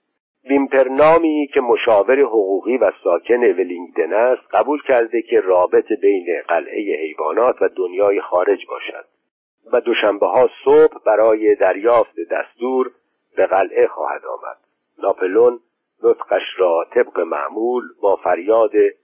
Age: 50-69